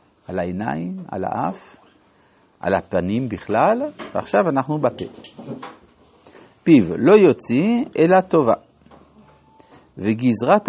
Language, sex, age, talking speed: Hebrew, male, 50-69, 90 wpm